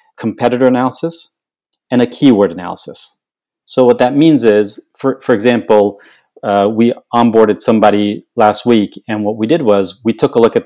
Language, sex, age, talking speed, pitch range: English, male, 40-59, 170 wpm, 105-130 Hz